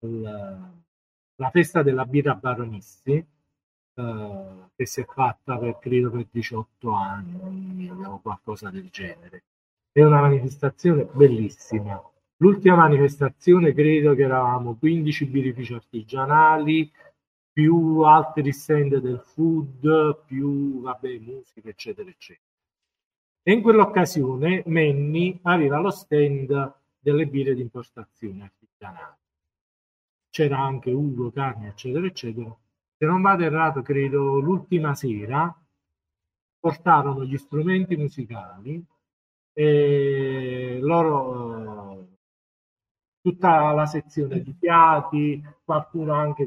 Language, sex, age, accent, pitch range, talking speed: Italian, male, 40-59, native, 120-160 Hz, 105 wpm